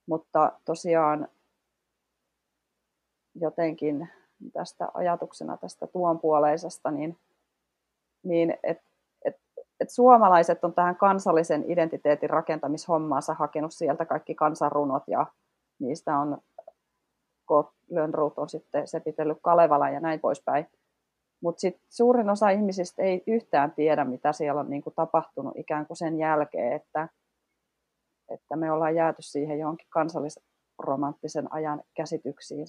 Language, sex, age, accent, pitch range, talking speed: Finnish, female, 30-49, native, 145-170 Hz, 110 wpm